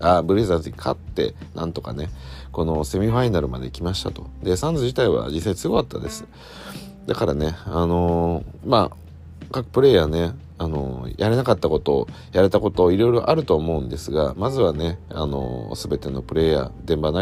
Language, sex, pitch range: Japanese, male, 75-95 Hz